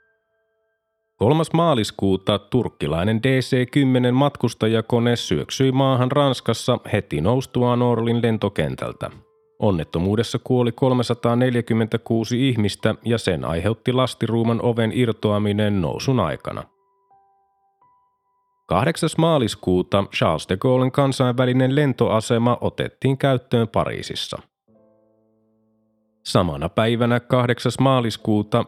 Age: 30-49